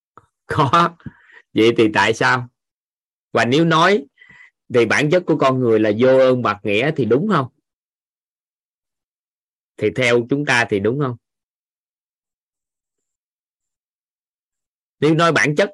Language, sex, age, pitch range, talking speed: Vietnamese, male, 20-39, 115-150 Hz, 125 wpm